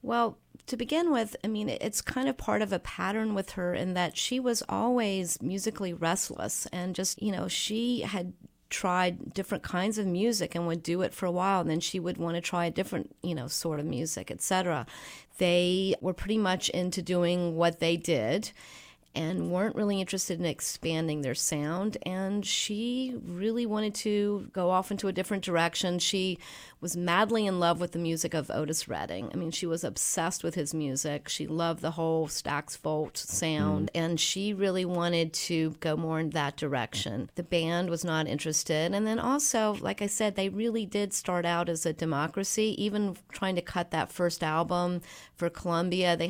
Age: 40-59